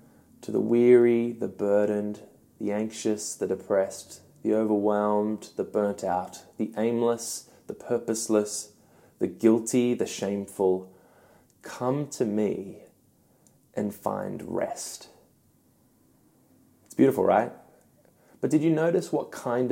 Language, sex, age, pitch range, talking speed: English, male, 20-39, 105-120 Hz, 115 wpm